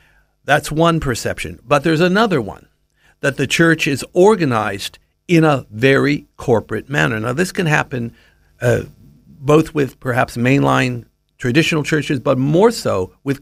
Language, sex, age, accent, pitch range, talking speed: English, male, 60-79, American, 115-160 Hz, 145 wpm